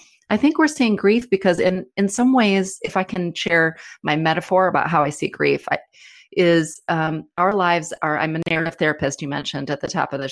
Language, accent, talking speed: English, American, 215 wpm